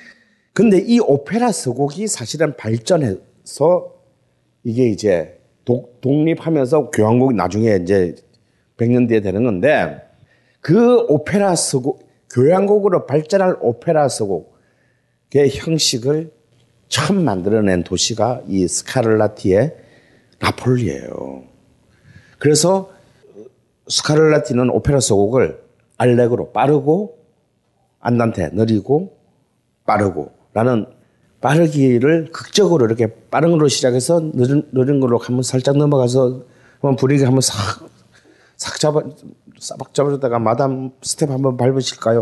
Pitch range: 120-165 Hz